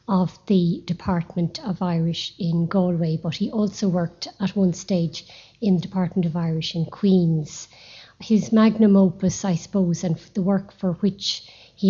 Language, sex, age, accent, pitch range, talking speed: English, female, 50-69, Irish, 170-200 Hz, 160 wpm